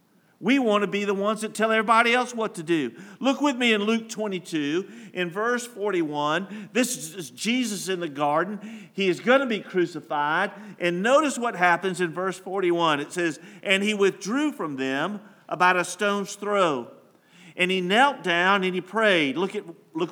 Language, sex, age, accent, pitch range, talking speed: English, male, 50-69, American, 150-210 Hz, 180 wpm